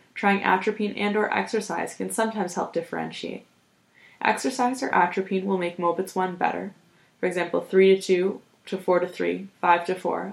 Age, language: 20-39, English